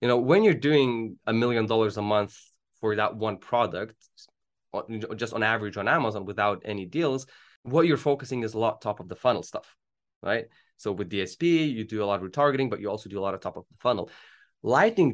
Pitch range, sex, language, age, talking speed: 105-135 Hz, male, English, 20-39, 220 wpm